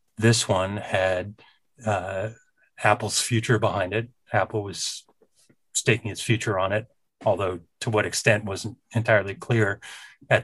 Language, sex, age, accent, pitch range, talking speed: English, male, 30-49, American, 100-120 Hz, 130 wpm